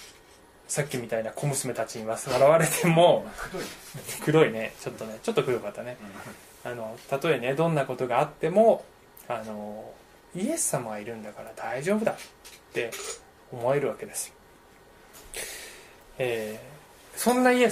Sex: male